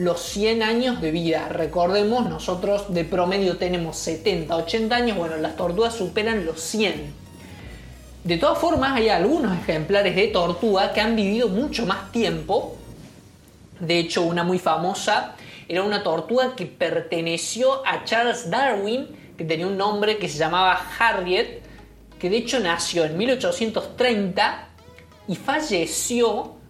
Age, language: 20-39, Spanish